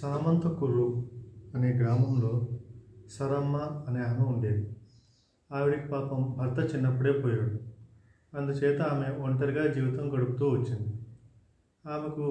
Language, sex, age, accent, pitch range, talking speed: Telugu, male, 30-49, native, 125-145 Hz, 95 wpm